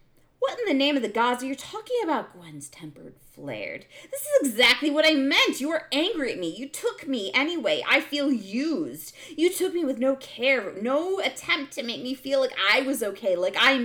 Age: 30-49